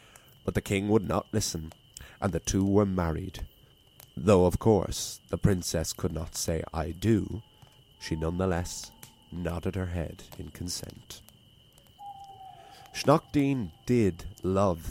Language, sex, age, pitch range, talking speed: English, male, 30-49, 90-140 Hz, 125 wpm